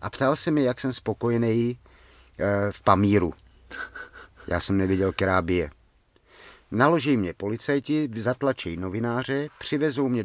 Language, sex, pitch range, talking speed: Czech, male, 95-130 Hz, 125 wpm